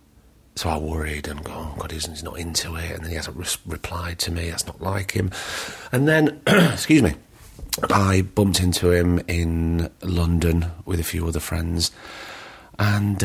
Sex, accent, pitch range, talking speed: male, British, 80-100 Hz, 170 wpm